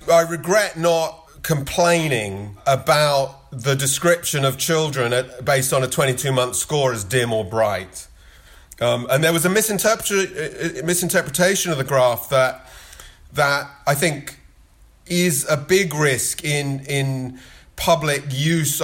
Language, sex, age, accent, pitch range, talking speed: English, male, 40-59, British, 125-160 Hz, 130 wpm